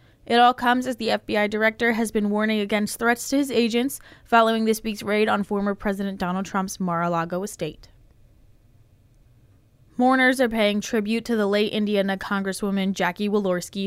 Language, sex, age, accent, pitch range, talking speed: English, female, 20-39, American, 180-220 Hz, 160 wpm